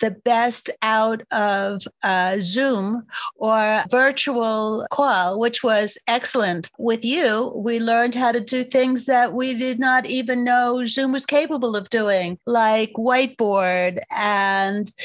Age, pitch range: 50-69, 210-255 Hz